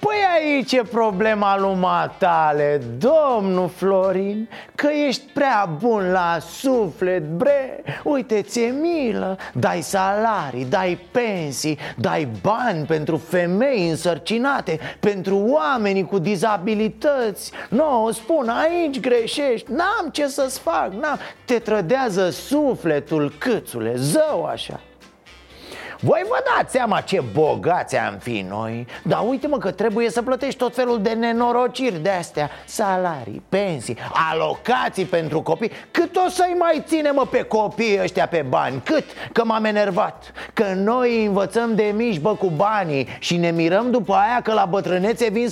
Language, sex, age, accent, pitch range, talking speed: Romanian, male, 30-49, native, 170-245 Hz, 135 wpm